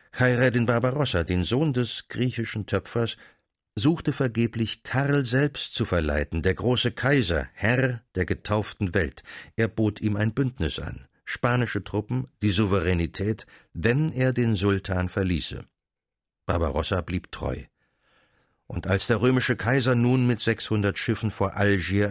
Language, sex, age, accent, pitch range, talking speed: German, male, 60-79, German, 95-125 Hz, 135 wpm